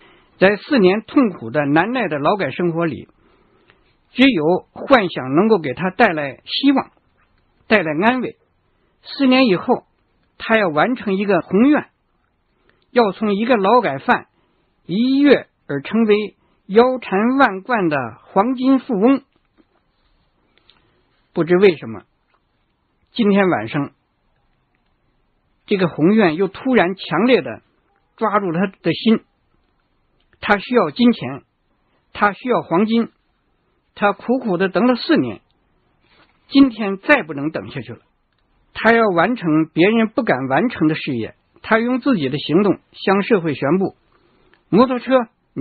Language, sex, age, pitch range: Chinese, male, 60-79, 175-245 Hz